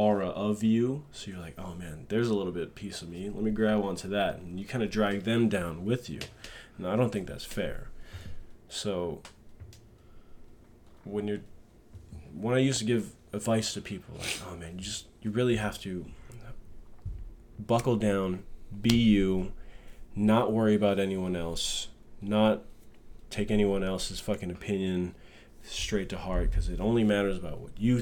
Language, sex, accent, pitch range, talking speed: English, male, American, 90-110 Hz, 170 wpm